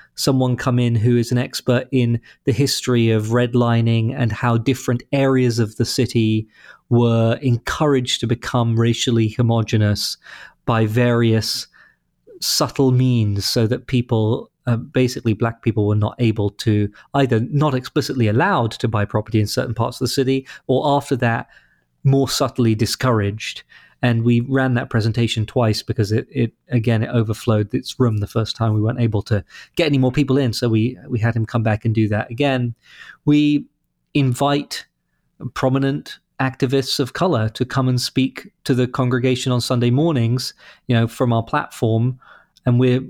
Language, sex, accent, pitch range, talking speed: English, male, British, 115-130 Hz, 165 wpm